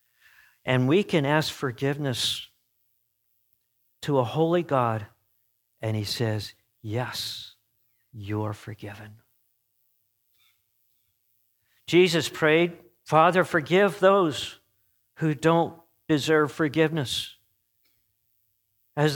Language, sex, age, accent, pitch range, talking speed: English, male, 50-69, American, 110-155 Hz, 80 wpm